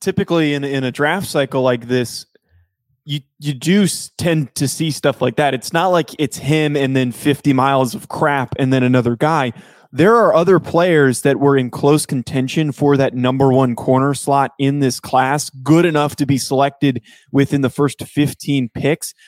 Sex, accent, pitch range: male, American, 135-165 Hz